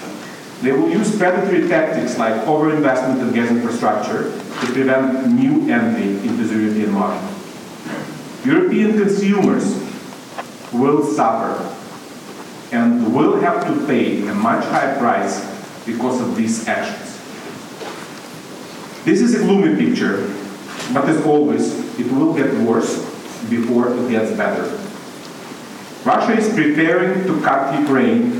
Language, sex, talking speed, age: English, male, 120 wpm, 40-59